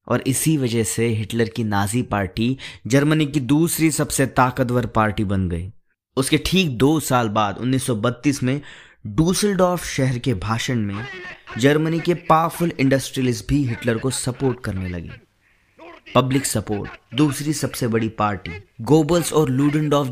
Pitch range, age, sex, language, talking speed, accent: 110-145 Hz, 20-39, male, Hindi, 140 wpm, native